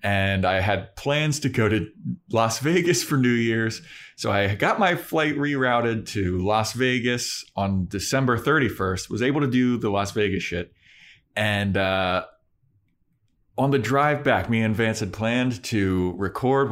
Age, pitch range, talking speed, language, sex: 30-49, 100-135 Hz, 160 wpm, English, male